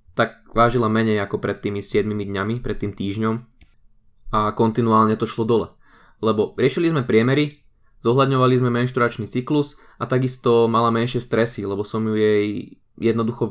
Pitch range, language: 105-120 Hz, Slovak